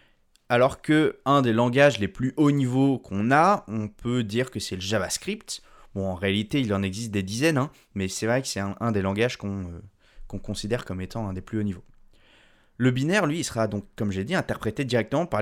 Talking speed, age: 230 wpm, 20-39